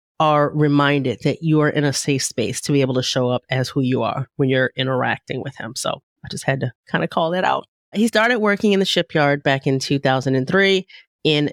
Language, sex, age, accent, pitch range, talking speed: English, female, 30-49, American, 135-175 Hz, 230 wpm